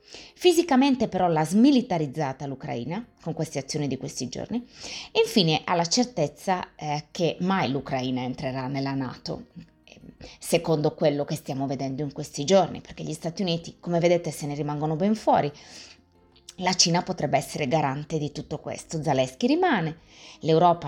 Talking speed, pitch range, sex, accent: 150 wpm, 150-200 Hz, female, native